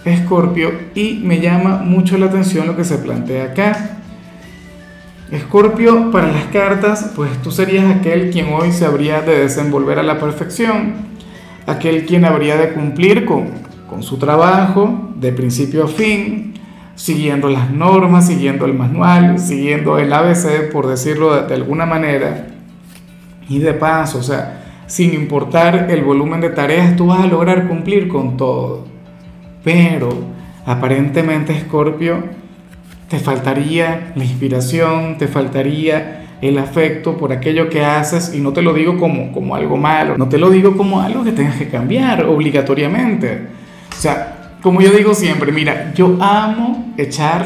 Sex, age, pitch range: male, 40-59, 145-185 Hz